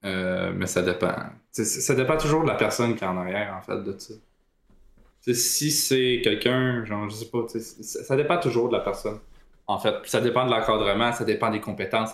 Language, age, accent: French, 20-39, Canadian